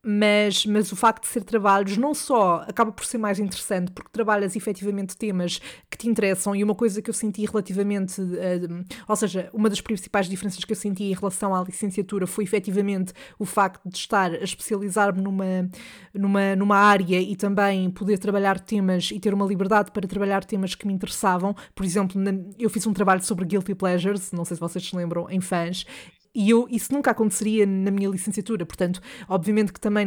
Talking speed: 190 wpm